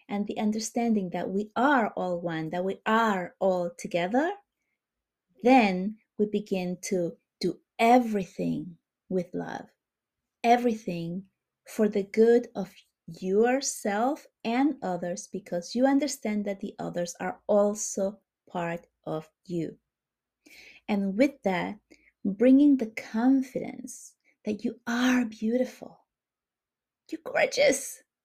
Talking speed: 110 wpm